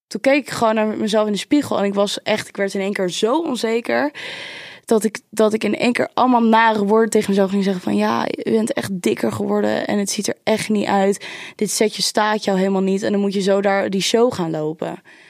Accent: Dutch